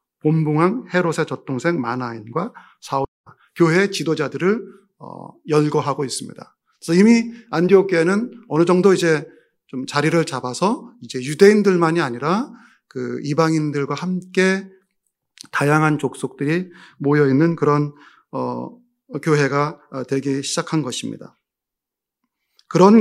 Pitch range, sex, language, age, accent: 135-180 Hz, male, Korean, 40-59, native